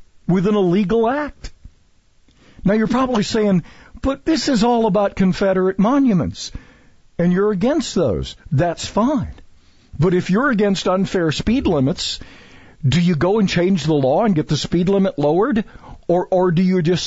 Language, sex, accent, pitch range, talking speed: English, male, American, 135-205 Hz, 160 wpm